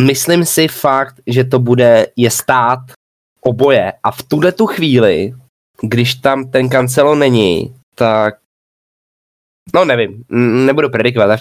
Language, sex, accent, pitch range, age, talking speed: English, male, Czech, 105-135 Hz, 20-39, 135 wpm